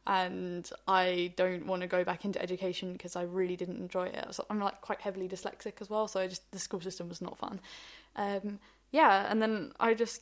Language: English